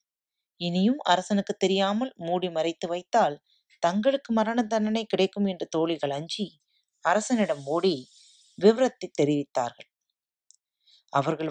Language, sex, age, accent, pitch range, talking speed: Tamil, female, 30-49, native, 150-205 Hz, 95 wpm